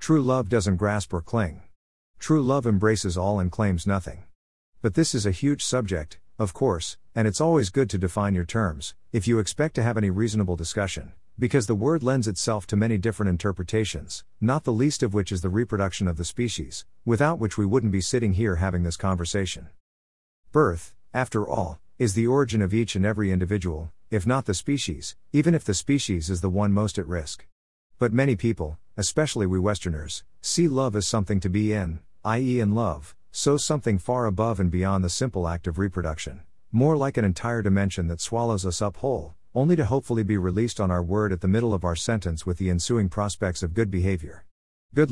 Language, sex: English, male